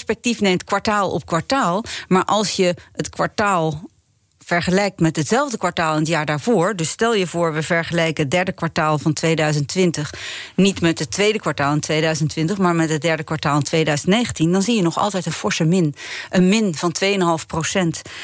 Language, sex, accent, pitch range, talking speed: Dutch, female, Dutch, 165-215 Hz, 185 wpm